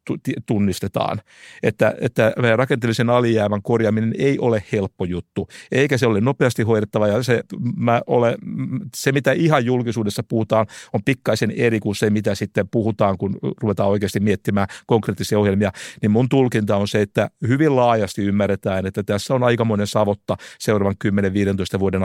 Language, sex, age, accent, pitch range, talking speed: Finnish, male, 60-79, native, 105-130 Hz, 150 wpm